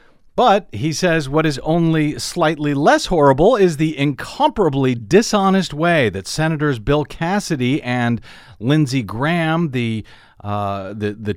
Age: 40-59